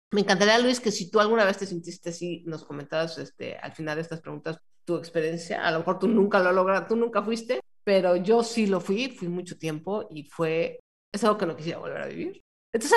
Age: 40-59